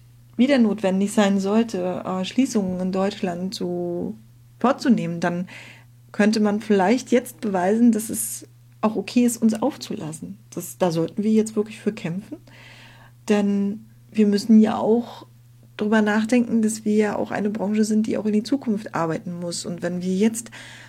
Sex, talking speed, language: female, 160 wpm, German